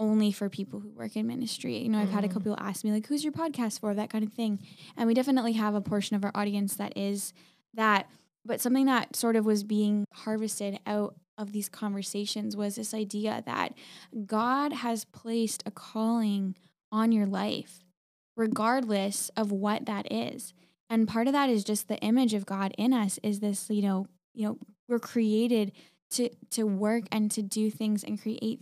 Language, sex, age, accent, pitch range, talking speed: English, female, 10-29, American, 200-225 Hz, 200 wpm